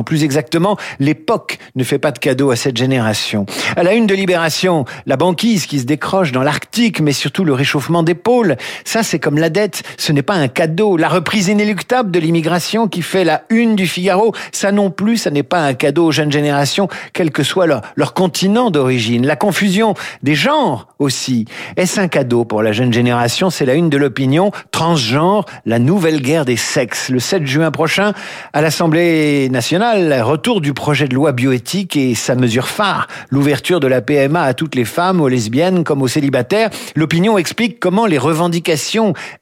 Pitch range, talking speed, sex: 145-195 Hz, 190 wpm, male